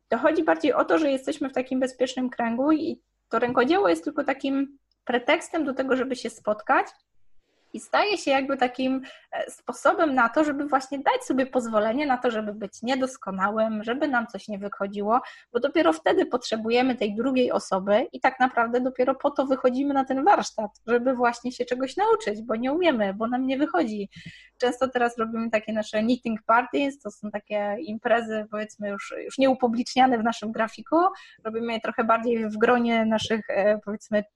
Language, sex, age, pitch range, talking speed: Polish, female, 20-39, 220-275 Hz, 175 wpm